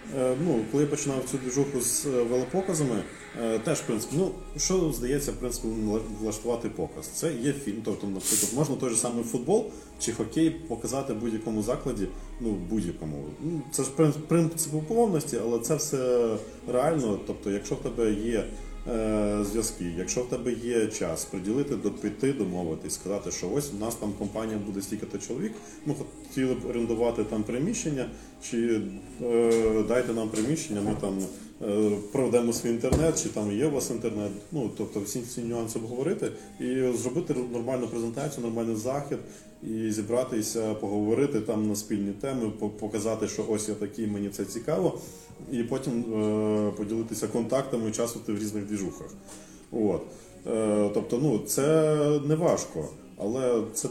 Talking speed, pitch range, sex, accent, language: 155 wpm, 105-130 Hz, male, native, Ukrainian